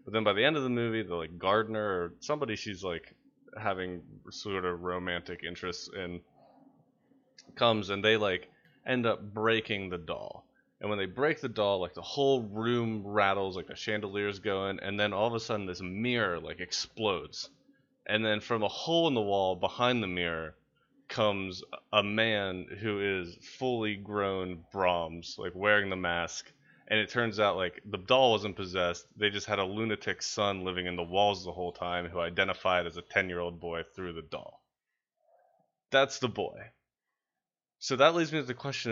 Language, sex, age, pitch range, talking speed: English, male, 20-39, 90-115 Hz, 185 wpm